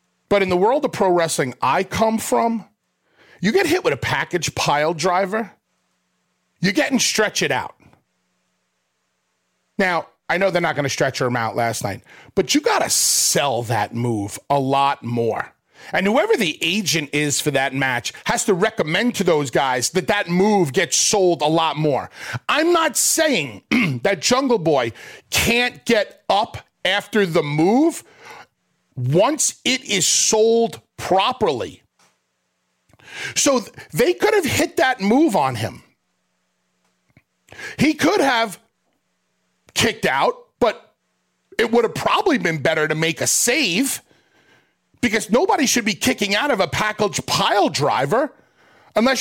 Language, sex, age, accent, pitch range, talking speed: English, male, 40-59, American, 150-235 Hz, 150 wpm